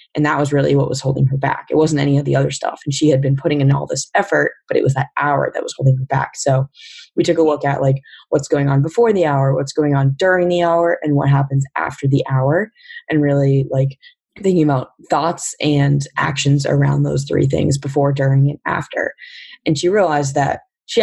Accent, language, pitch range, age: American, English, 135-160 Hz, 20-39